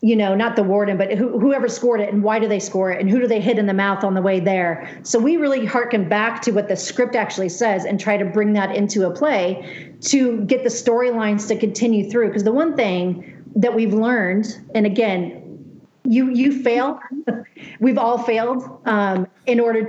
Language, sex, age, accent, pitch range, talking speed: English, female, 40-59, American, 200-240 Hz, 215 wpm